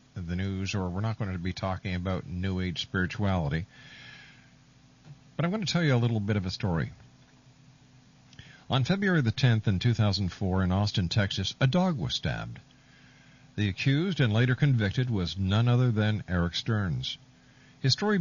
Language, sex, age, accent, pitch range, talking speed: English, male, 50-69, American, 105-135 Hz, 170 wpm